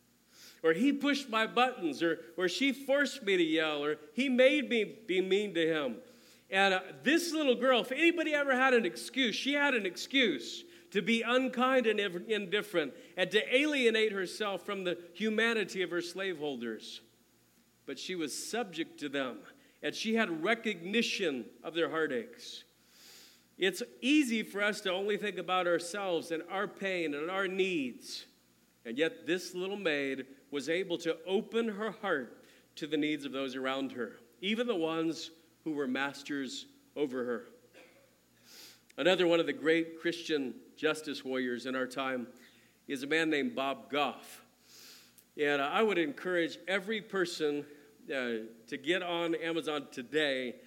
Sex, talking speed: male, 160 wpm